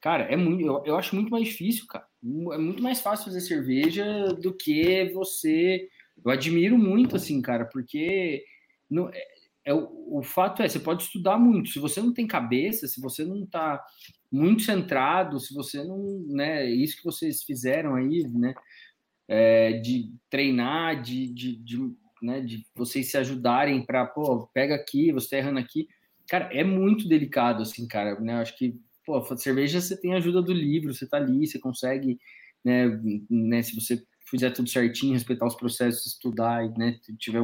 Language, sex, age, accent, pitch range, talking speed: Portuguese, male, 20-39, Brazilian, 120-185 Hz, 185 wpm